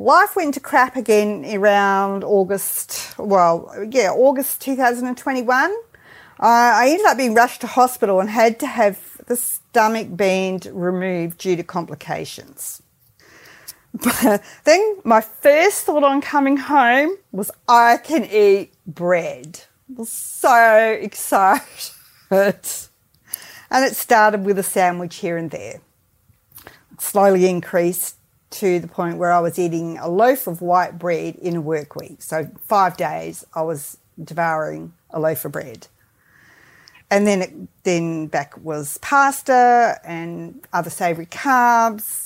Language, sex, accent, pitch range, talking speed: English, female, Australian, 175-250 Hz, 135 wpm